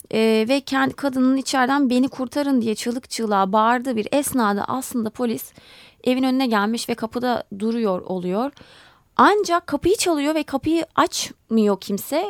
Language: Turkish